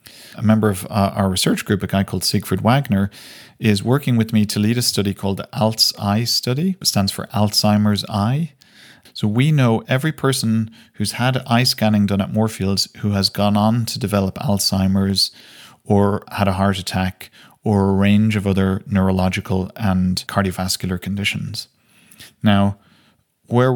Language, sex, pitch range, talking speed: English, male, 95-115 Hz, 160 wpm